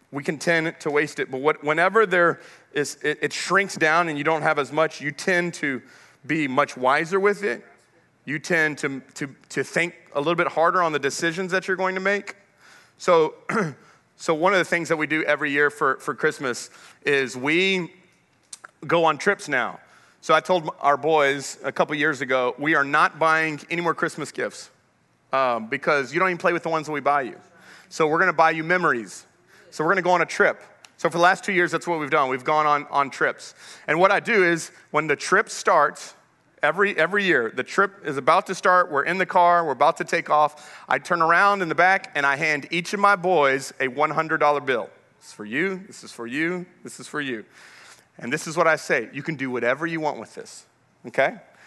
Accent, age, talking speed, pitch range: American, 30-49, 225 wpm, 150-180 Hz